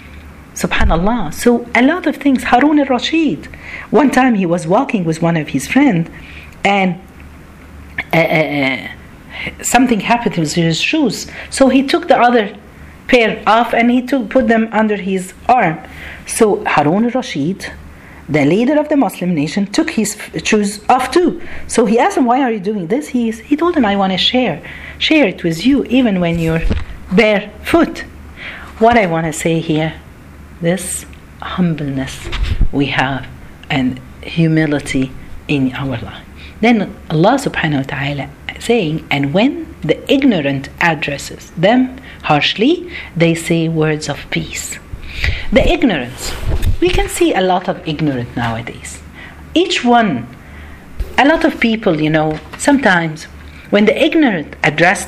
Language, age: Arabic, 40-59